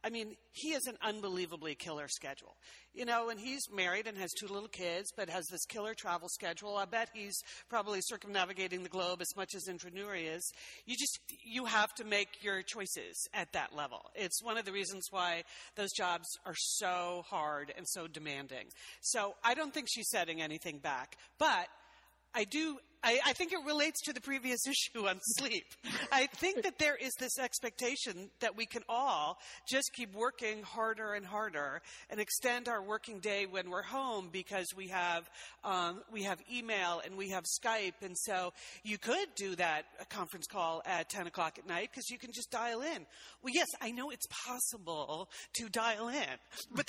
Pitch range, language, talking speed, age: 185-245 Hz, English, 190 wpm, 50-69